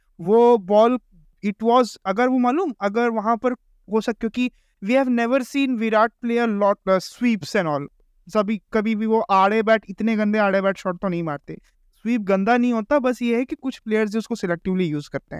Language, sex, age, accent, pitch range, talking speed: Hindi, male, 20-39, native, 190-245 Hz, 170 wpm